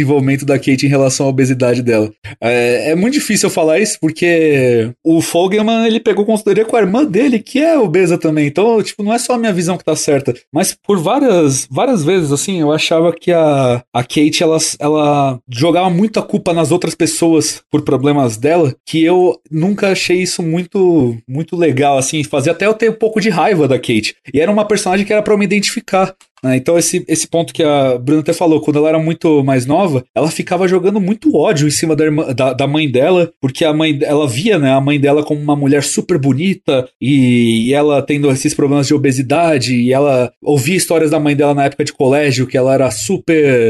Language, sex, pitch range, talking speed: Portuguese, male, 140-180 Hz, 215 wpm